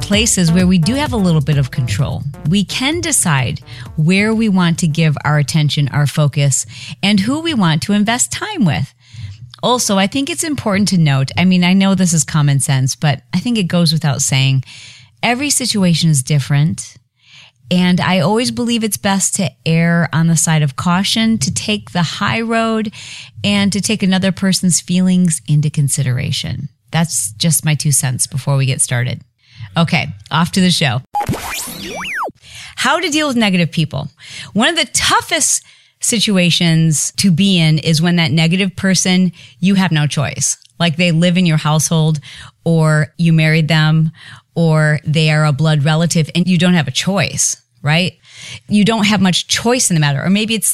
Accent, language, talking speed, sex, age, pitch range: American, English, 180 wpm, female, 40-59, 145-190 Hz